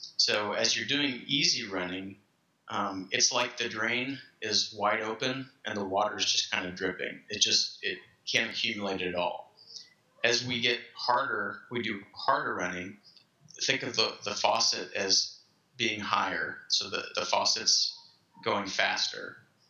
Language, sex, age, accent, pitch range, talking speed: English, male, 30-49, American, 95-120 Hz, 150 wpm